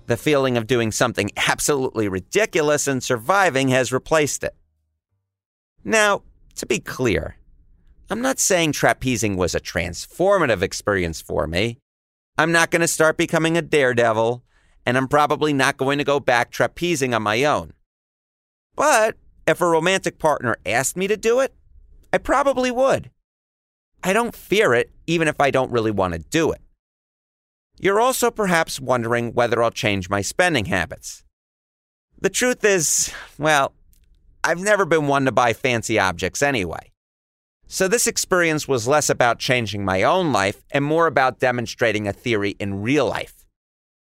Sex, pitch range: male, 100-160 Hz